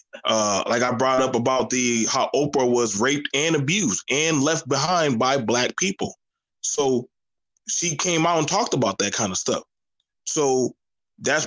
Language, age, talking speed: English, 20-39, 165 wpm